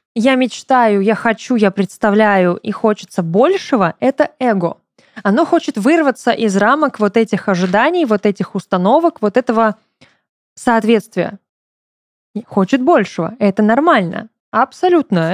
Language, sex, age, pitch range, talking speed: Russian, female, 20-39, 195-255 Hz, 115 wpm